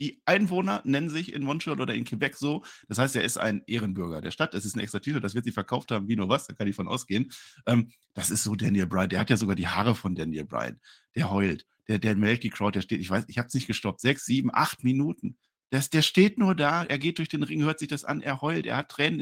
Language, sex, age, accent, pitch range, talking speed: German, male, 50-69, German, 100-140 Hz, 280 wpm